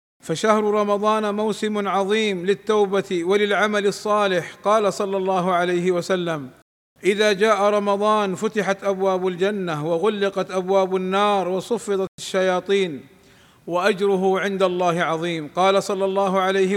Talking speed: 110 wpm